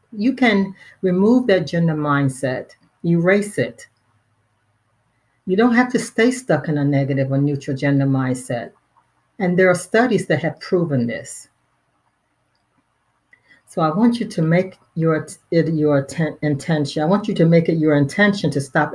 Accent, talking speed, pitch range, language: American, 150 wpm, 135-165 Hz, English